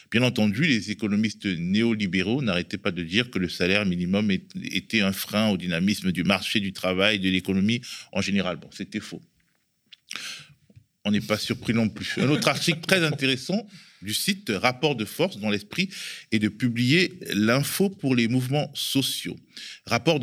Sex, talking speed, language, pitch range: male, 165 wpm, French, 100-140 Hz